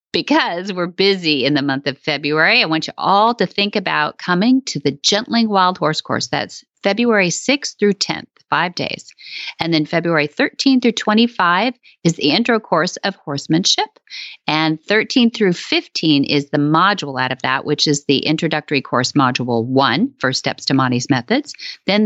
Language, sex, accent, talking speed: English, female, American, 175 wpm